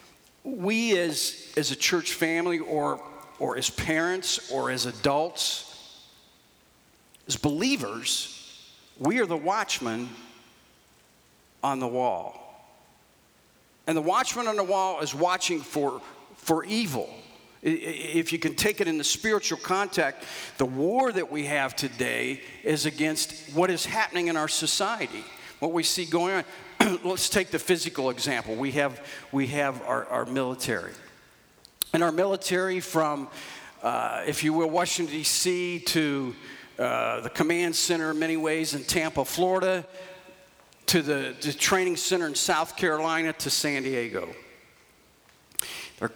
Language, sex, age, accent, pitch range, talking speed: English, male, 50-69, American, 145-180 Hz, 140 wpm